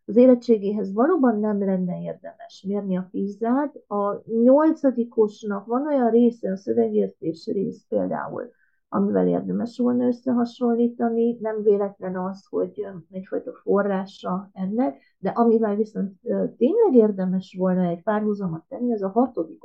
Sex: female